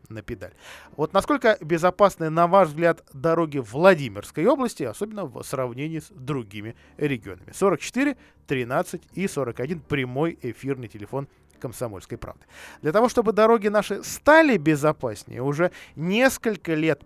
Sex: male